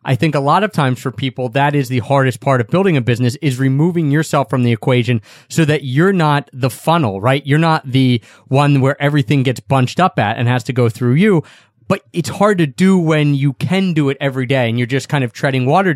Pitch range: 130-155 Hz